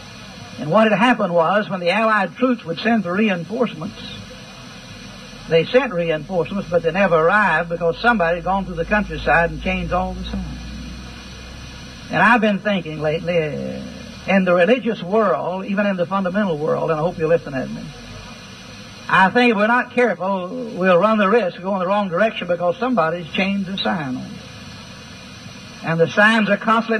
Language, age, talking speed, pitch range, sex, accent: English, 60-79, 175 wpm, 175-235 Hz, male, American